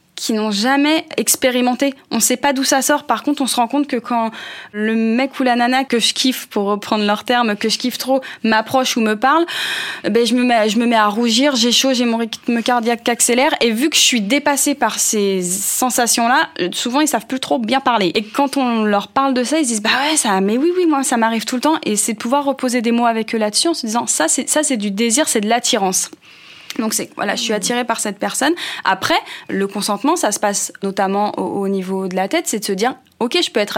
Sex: female